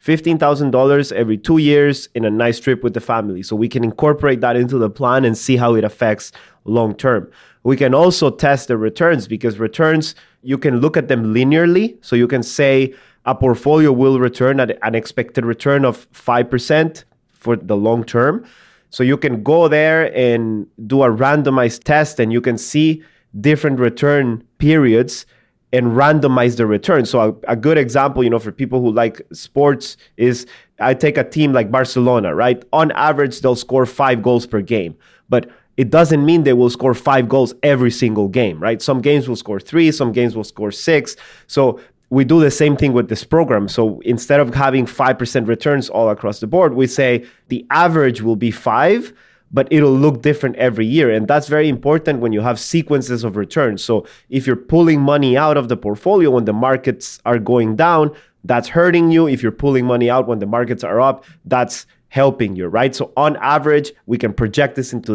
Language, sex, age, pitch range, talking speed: English, male, 30-49, 120-145 Hz, 195 wpm